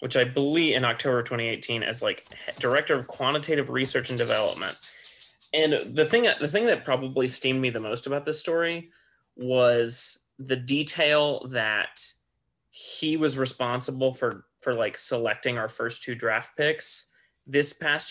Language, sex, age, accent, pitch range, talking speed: English, male, 30-49, American, 125-145 Hz, 150 wpm